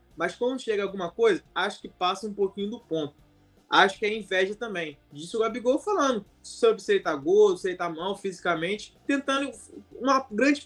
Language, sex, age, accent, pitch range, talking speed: Portuguese, male, 20-39, Brazilian, 190-250 Hz, 190 wpm